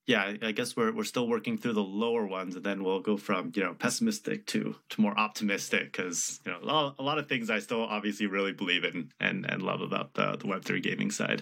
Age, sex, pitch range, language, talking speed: 30-49, male, 105-155 Hz, English, 245 wpm